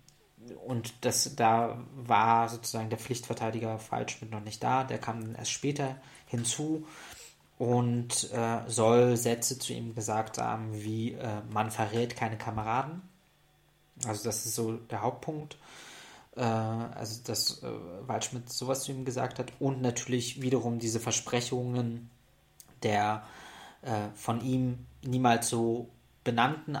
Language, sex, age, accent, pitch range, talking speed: German, male, 20-39, German, 110-125 Hz, 130 wpm